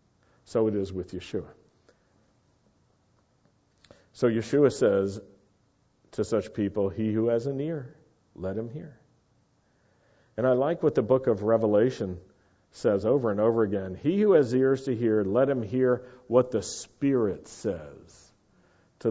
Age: 50-69